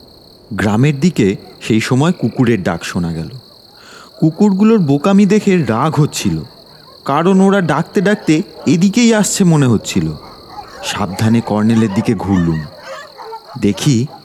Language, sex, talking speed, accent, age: Bengali, male, 110 wpm, native, 30-49